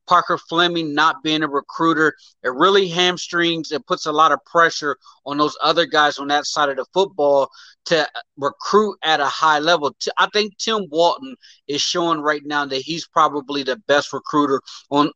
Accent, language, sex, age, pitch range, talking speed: American, English, male, 30-49, 145-170 Hz, 180 wpm